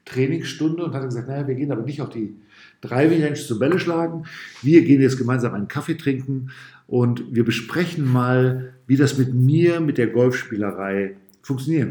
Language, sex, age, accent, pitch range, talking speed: German, male, 50-69, German, 110-140 Hz, 180 wpm